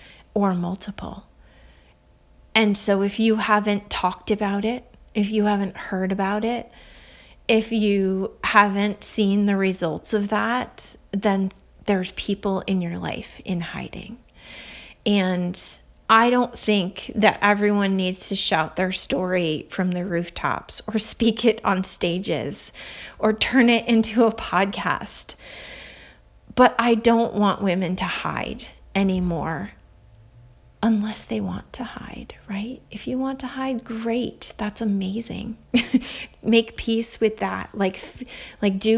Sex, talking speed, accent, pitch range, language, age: female, 135 wpm, American, 185-220 Hz, English, 30-49